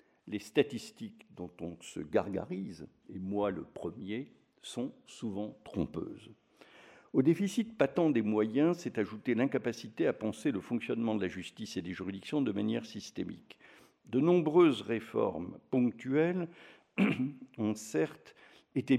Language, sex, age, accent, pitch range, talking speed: French, male, 60-79, French, 105-145 Hz, 130 wpm